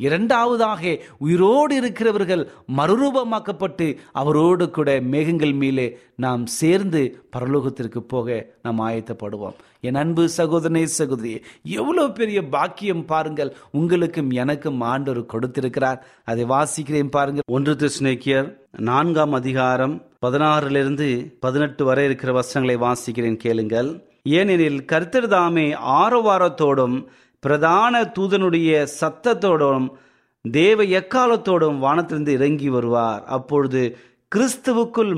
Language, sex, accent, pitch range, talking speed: Tamil, male, native, 125-170 Hz, 85 wpm